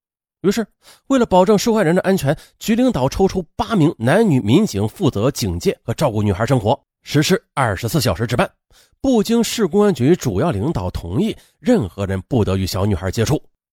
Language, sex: Chinese, male